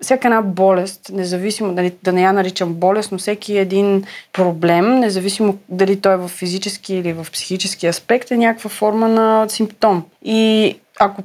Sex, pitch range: female, 185-235 Hz